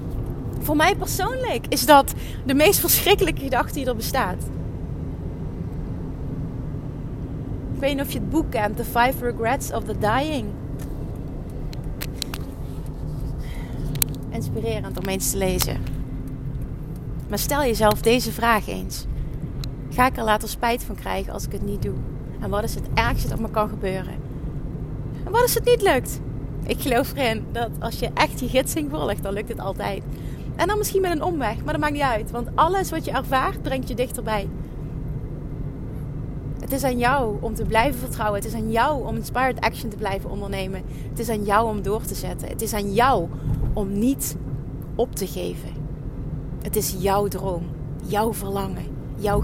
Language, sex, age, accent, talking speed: Dutch, female, 30-49, Dutch, 170 wpm